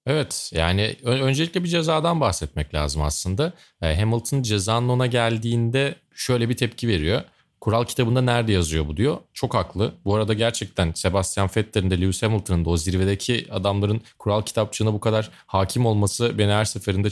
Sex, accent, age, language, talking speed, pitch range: male, native, 30-49, Turkish, 160 wpm, 90-125 Hz